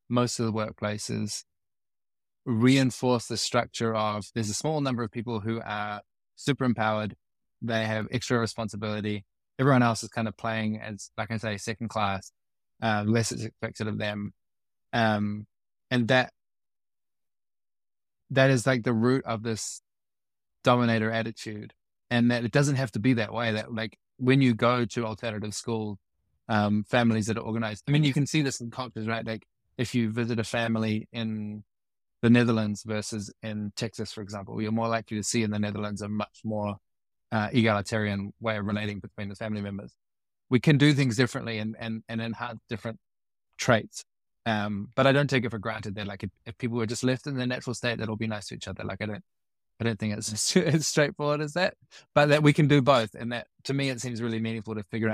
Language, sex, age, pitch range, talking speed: English, male, 20-39, 105-120 Hz, 200 wpm